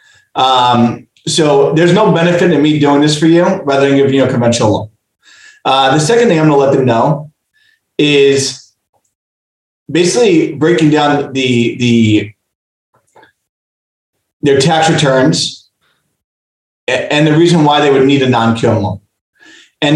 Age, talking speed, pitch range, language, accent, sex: 30-49, 140 wpm, 130-165 Hz, English, American, male